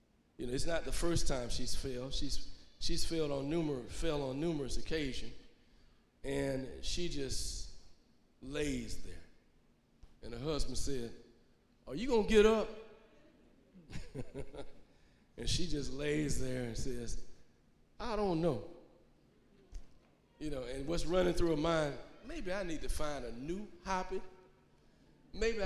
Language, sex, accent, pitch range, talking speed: English, male, American, 135-180 Hz, 140 wpm